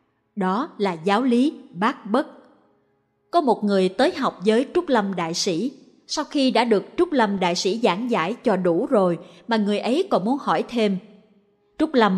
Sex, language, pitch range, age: female, Vietnamese, 190-265 Hz, 20-39